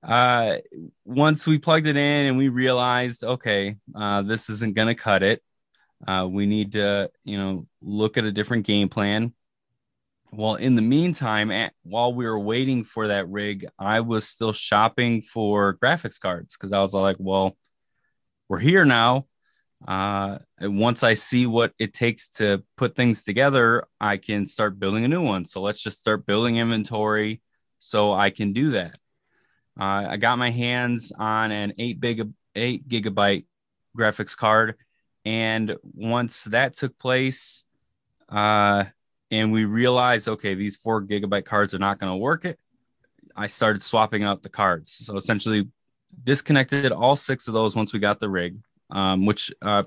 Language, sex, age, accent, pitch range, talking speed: English, male, 20-39, American, 100-120 Hz, 165 wpm